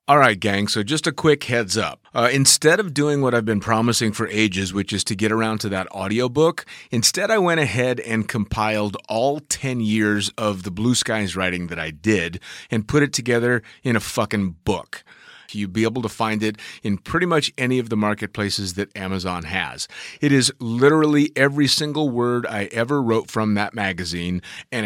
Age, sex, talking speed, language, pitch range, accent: 30-49, male, 195 wpm, English, 105-135 Hz, American